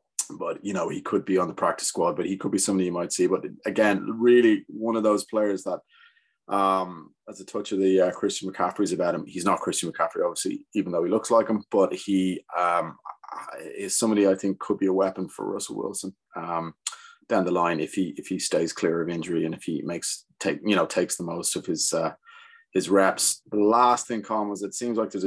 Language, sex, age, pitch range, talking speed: English, male, 30-49, 85-110 Hz, 235 wpm